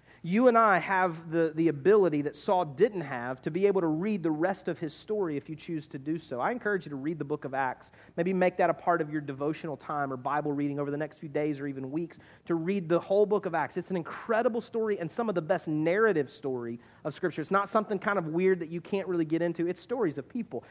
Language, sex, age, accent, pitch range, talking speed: English, male, 30-49, American, 165-230 Hz, 265 wpm